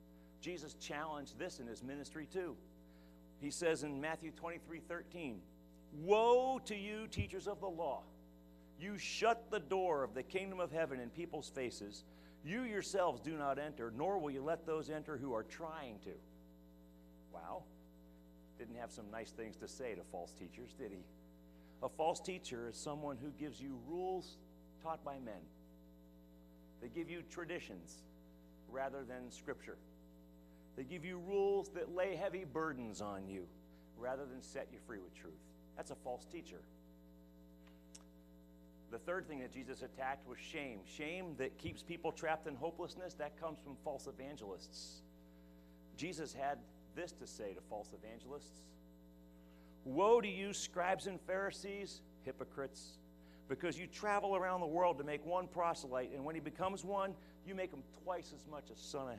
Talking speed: 160 wpm